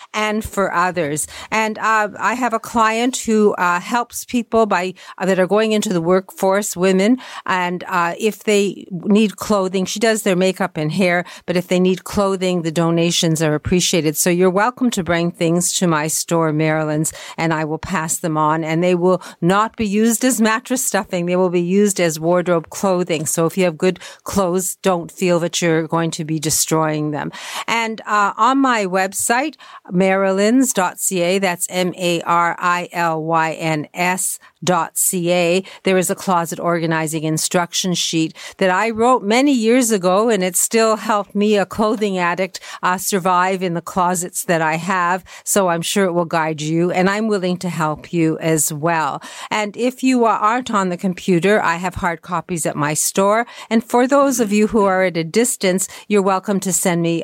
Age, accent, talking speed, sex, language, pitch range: 50-69, American, 180 wpm, female, English, 165-205 Hz